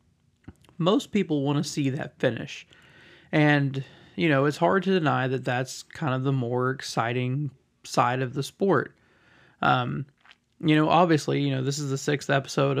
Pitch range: 135-155 Hz